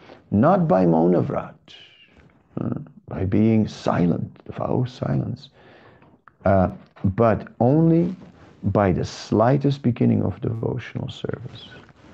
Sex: male